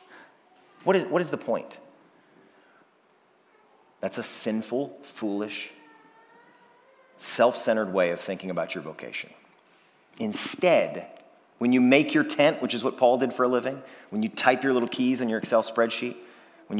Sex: male